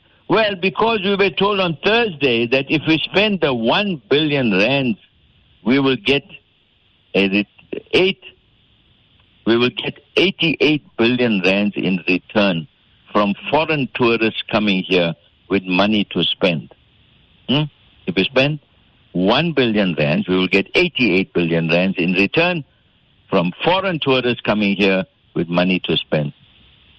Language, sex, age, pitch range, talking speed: English, male, 60-79, 100-160 Hz, 140 wpm